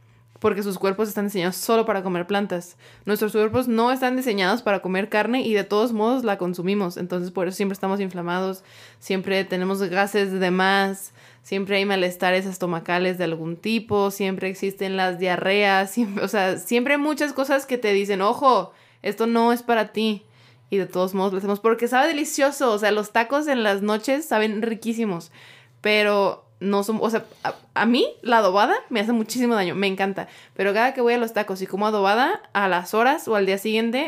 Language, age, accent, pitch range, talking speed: Spanish, 20-39, Mexican, 185-225 Hz, 195 wpm